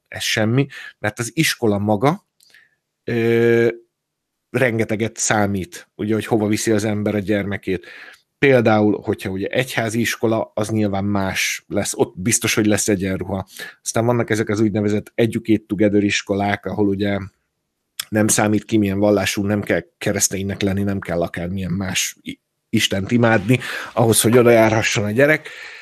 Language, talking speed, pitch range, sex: Hungarian, 145 wpm, 100-115 Hz, male